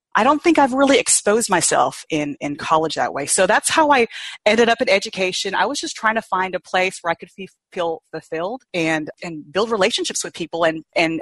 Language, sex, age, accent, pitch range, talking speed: English, female, 30-49, American, 160-205 Hz, 220 wpm